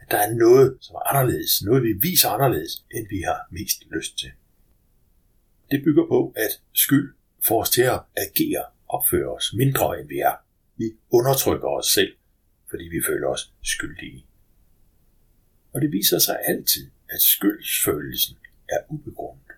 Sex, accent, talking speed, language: male, native, 155 wpm, Danish